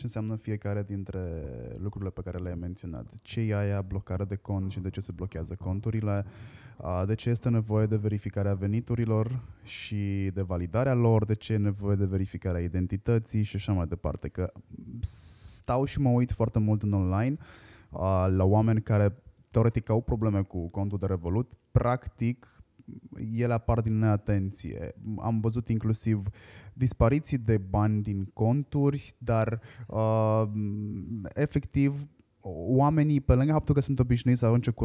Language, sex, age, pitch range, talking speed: Romanian, male, 20-39, 100-120 Hz, 150 wpm